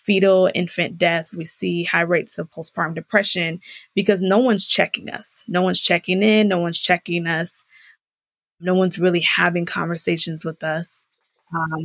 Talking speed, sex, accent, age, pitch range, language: 150 wpm, female, American, 20-39, 170-200 Hz, English